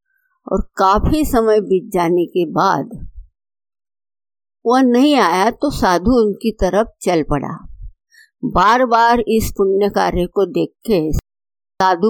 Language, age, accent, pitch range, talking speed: Hindi, 50-69, native, 180-250 Hz, 120 wpm